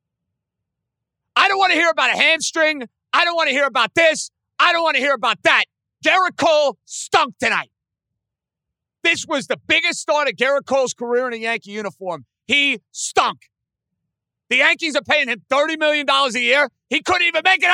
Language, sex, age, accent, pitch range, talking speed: English, male, 40-59, American, 175-275 Hz, 185 wpm